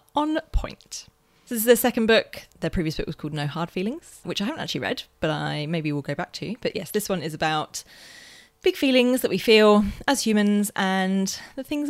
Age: 30-49